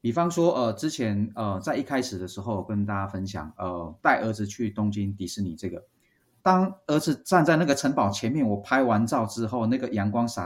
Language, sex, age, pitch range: Chinese, male, 30-49, 100-130 Hz